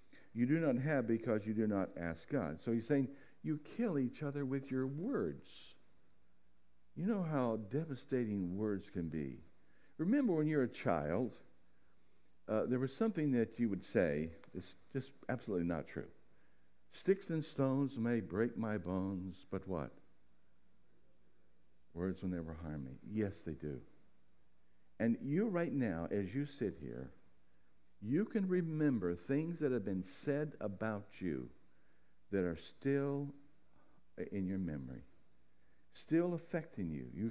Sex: male